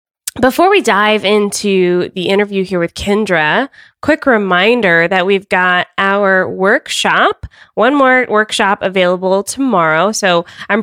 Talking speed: 125 wpm